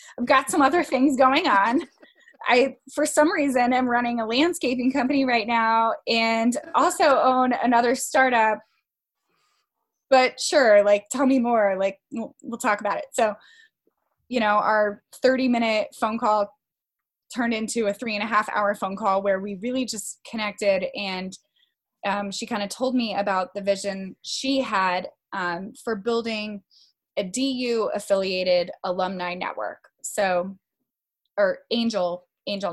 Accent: American